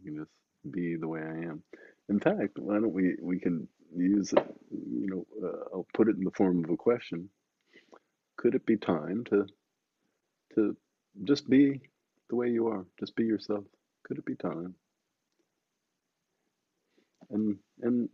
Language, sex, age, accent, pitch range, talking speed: English, male, 50-69, American, 100-140 Hz, 160 wpm